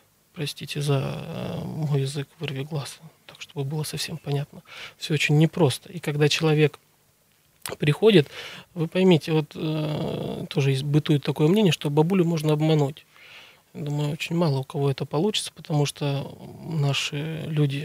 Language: Russian